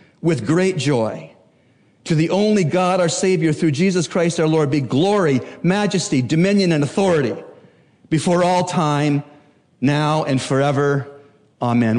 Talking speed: 135 wpm